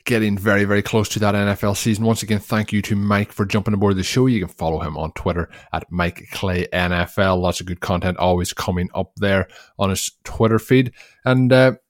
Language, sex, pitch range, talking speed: English, male, 90-115 Hz, 215 wpm